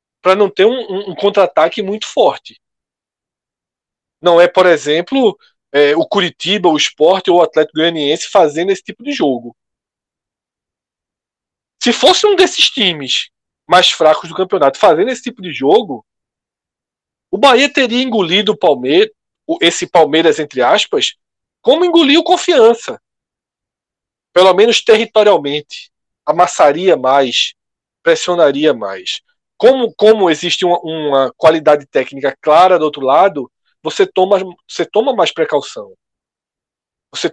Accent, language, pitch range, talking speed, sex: Brazilian, Portuguese, 160-265 Hz, 120 wpm, male